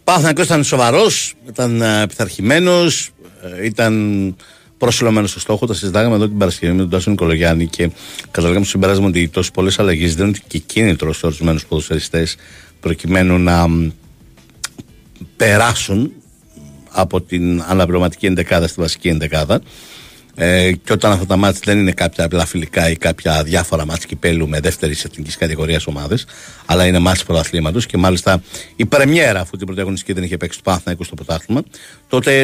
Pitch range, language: 85-105 Hz, Greek